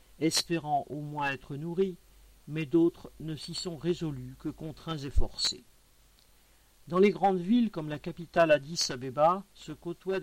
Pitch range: 140-180 Hz